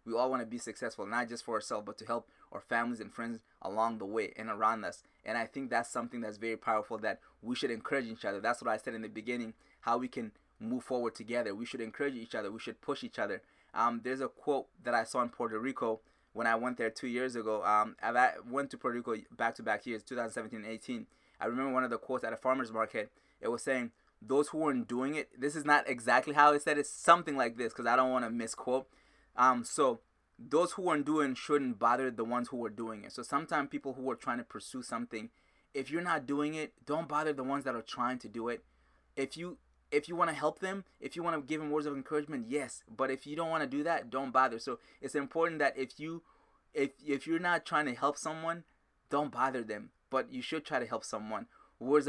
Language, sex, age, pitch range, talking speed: English, male, 20-39, 115-150 Hz, 250 wpm